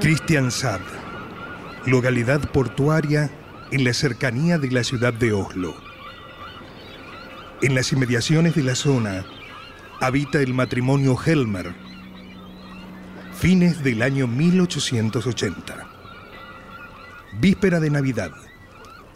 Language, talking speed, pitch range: Spanish, 90 wpm, 105-150 Hz